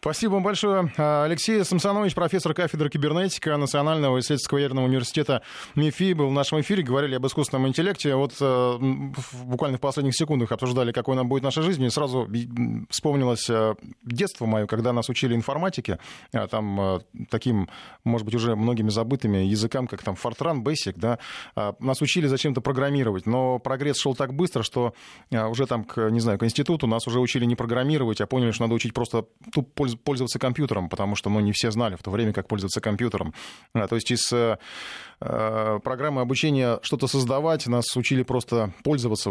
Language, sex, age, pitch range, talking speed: Russian, male, 20-39, 115-150 Hz, 170 wpm